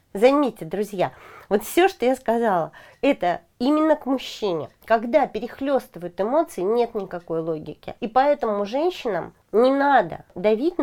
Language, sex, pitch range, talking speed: Russian, female, 190-265 Hz, 130 wpm